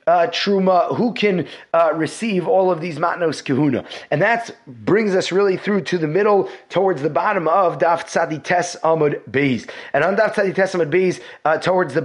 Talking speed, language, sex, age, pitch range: 185 wpm, English, male, 30-49, 155-195 Hz